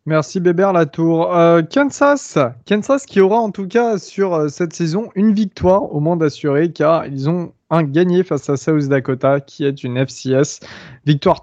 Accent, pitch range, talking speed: French, 135-175 Hz, 175 wpm